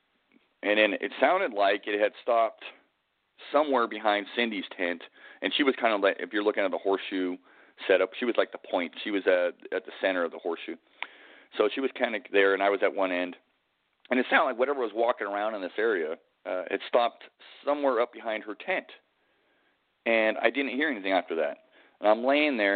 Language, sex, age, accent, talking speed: English, male, 40-59, American, 215 wpm